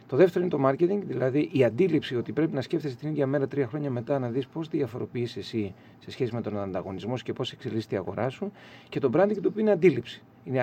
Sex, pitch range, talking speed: male, 125-160 Hz, 245 wpm